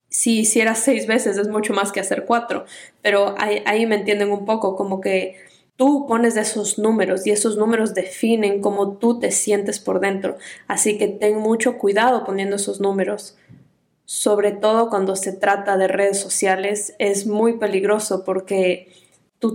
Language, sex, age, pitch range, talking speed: Spanish, female, 20-39, 200-225 Hz, 165 wpm